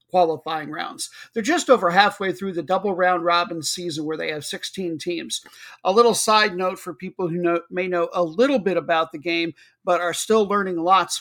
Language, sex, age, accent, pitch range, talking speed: English, male, 50-69, American, 170-205 Hz, 205 wpm